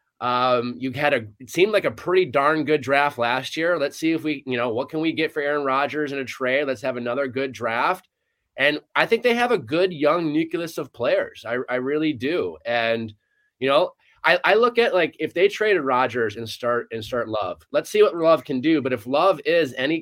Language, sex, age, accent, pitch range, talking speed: English, male, 30-49, American, 125-155 Hz, 235 wpm